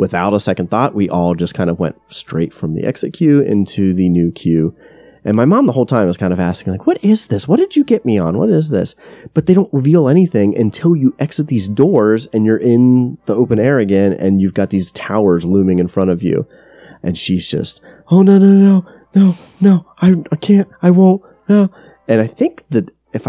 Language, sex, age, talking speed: English, male, 30-49, 230 wpm